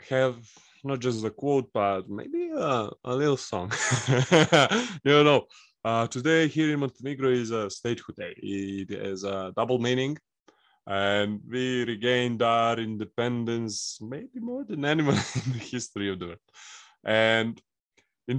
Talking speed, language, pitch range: 145 wpm, English, 105-135 Hz